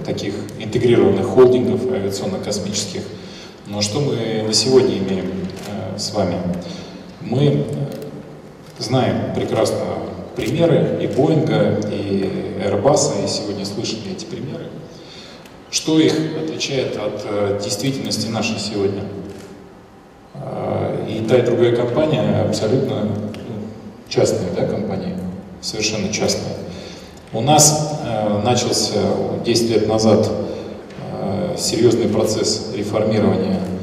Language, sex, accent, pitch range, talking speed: Russian, male, native, 100-110 Hz, 105 wpm